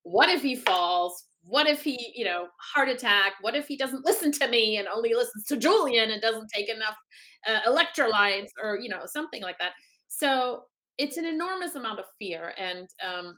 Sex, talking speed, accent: female, 195 wpm, American